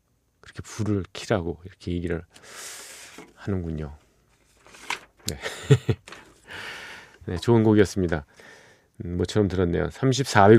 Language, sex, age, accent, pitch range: Korean, male, 40-59, native, 95-135 Hz